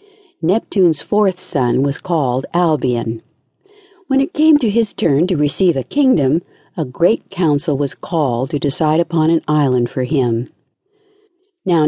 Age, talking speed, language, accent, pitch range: 60-79, 145 wpm, English, American, 140-225 Hz